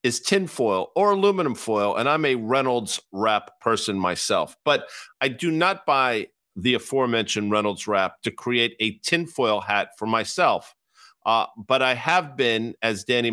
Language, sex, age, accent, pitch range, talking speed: English, male, 50-69, American, 110-145 Hz, 160 wpm